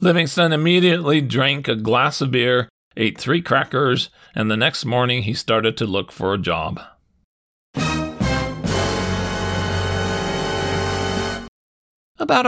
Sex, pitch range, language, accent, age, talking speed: male, 110-155 Hz, English, American, 40-59, 105 wpm